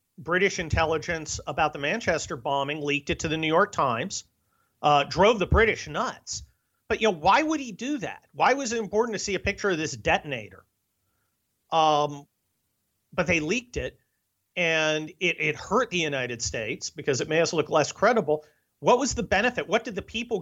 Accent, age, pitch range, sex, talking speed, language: American, 40-59, 145-185 Hz, male, 190 wpm, English